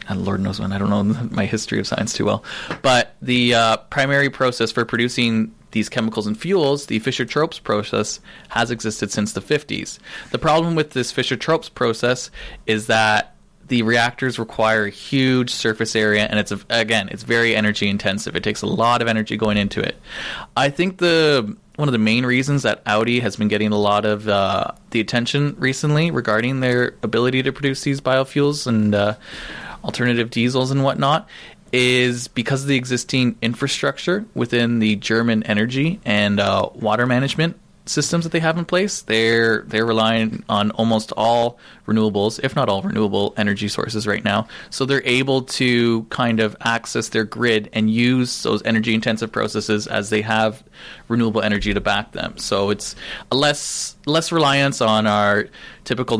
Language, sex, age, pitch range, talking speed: English, male, 20-39, 105-130 Hz, 175 wpm